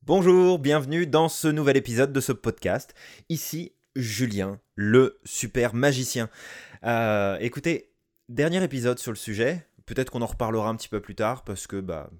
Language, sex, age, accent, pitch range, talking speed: French, male, 20-39, French, 95-125 Hz, 160 wpm